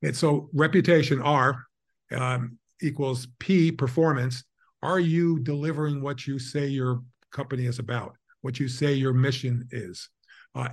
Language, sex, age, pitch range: English, male, 50-69, 125-150 Hz